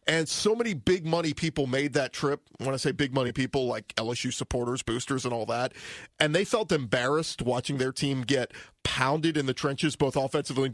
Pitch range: 130-155 Hz